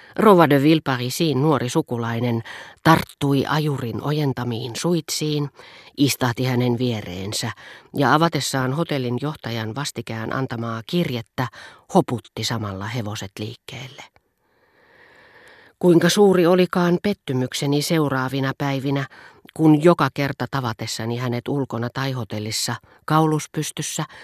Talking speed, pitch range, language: 90 wpm, 120-155 Hz, Finnish